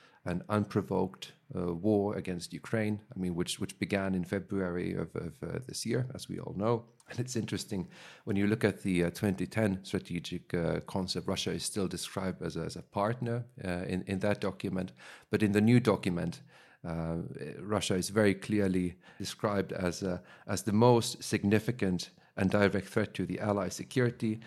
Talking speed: 180 wpm